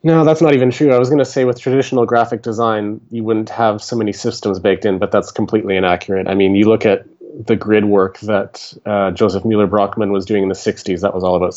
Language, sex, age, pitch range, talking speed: Bulgarian, male, 30-49, 105-120 Hz, 250 wpm